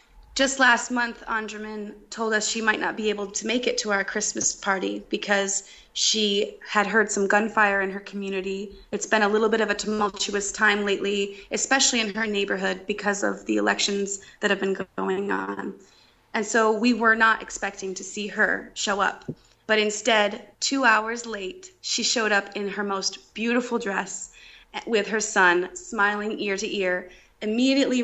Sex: female